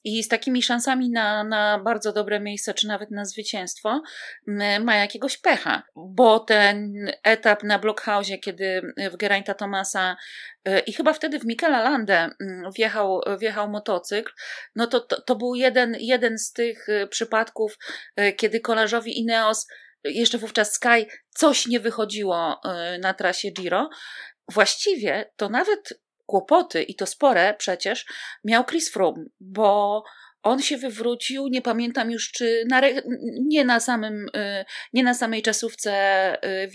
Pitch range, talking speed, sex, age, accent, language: 205-245 Hz, 135 wpm, female, 30-49, native, Polish